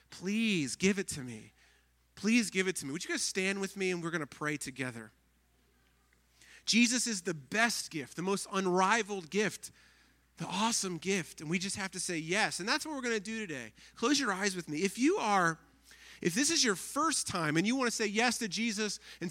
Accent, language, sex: American, English, male